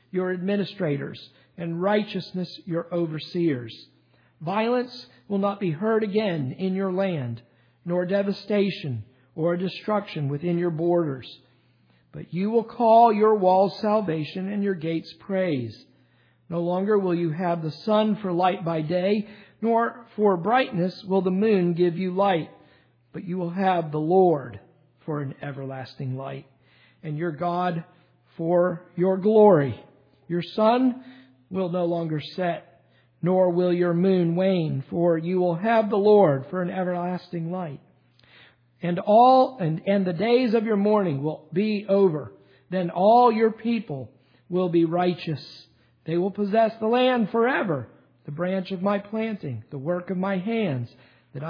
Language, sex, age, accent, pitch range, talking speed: English, male, 50-69, American, 155-200 Hz, 145 wpm